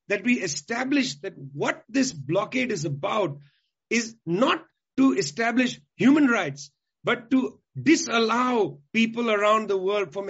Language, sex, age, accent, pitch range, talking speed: English, male, 40-59, Indian, 180-240 Hz, 135 wpm